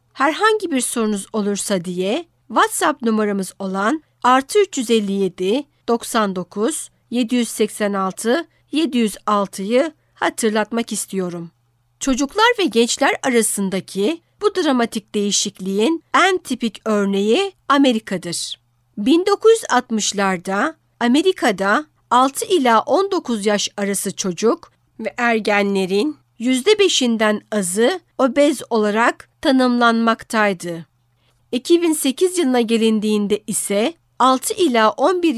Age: 60-79